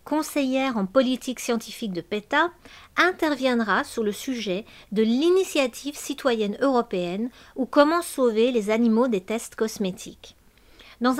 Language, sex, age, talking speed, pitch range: French, female, 50-69, 125 wpm, 210-265 Hz